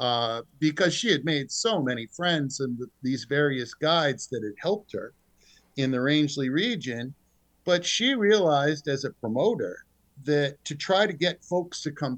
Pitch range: 125-165 Hz